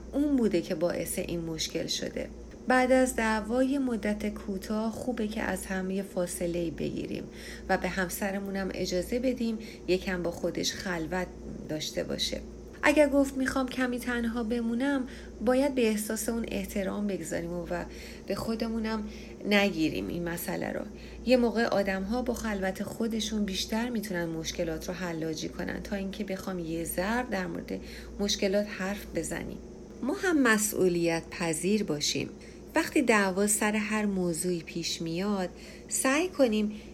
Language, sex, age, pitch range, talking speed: Persian, female, 30-49, 185-240 Hz, 140 wpm